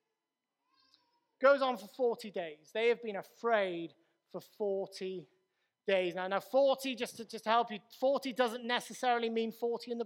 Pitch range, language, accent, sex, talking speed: 210-255 Hz, English, British, male, 165 wpm